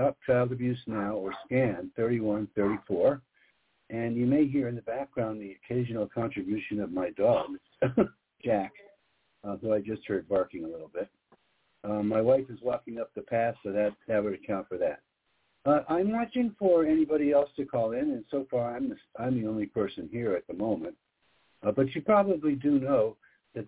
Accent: American